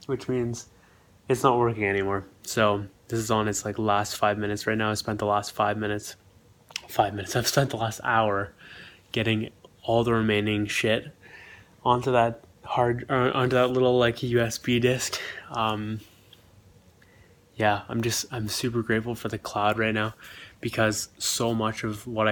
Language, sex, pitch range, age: English, male, 105-120 Hz, 20-39